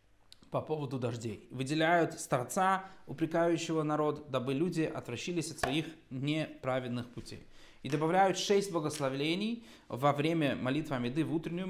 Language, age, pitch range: Russian, 20-39, 135-175 Hz